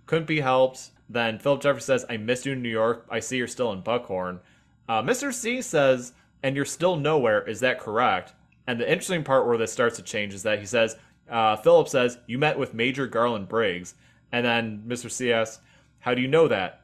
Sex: male